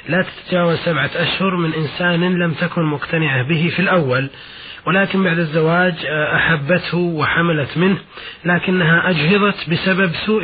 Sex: male